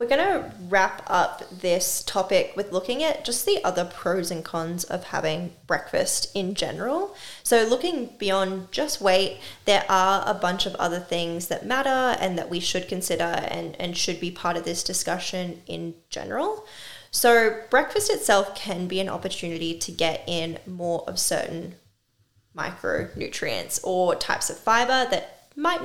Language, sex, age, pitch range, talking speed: English, female, 10-29, 175-215 Hz, 165 wpm